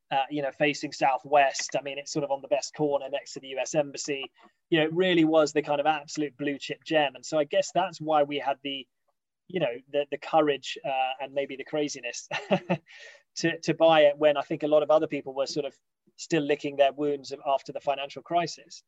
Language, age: English, 20-39